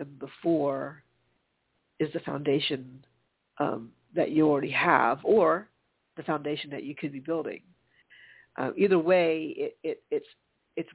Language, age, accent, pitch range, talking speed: English, 50-69, American, 145-170 Hz, 145 wpm